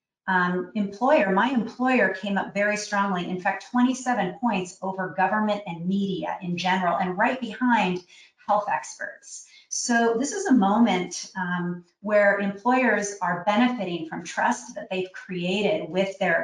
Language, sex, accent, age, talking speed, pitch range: English, female, American, 40-59, 145 wpm, 185-230 Hz